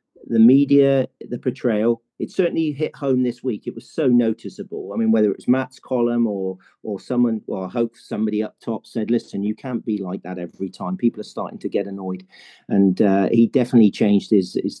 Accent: British